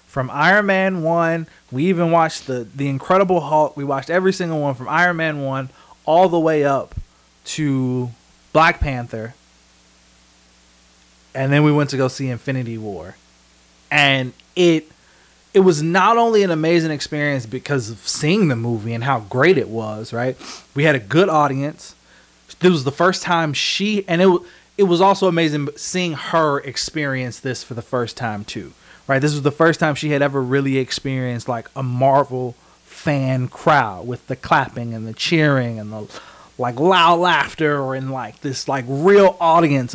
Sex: male